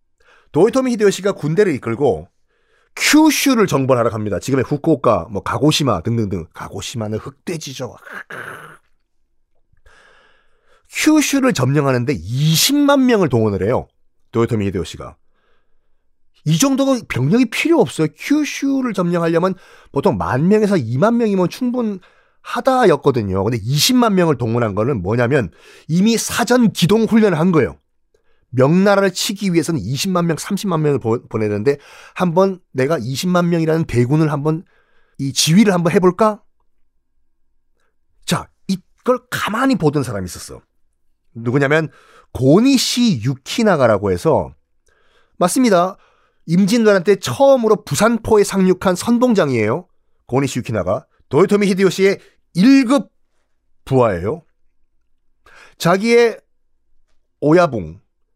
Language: Korean